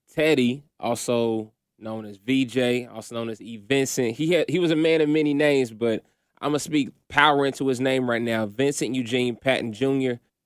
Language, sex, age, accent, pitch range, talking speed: English, male, 20-39, American, 115-135 Hz, 195 wpm